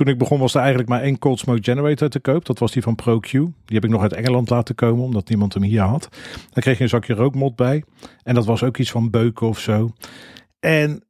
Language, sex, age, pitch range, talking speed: Dutch, male, 40-59, 115-135 Hz, 260 wpm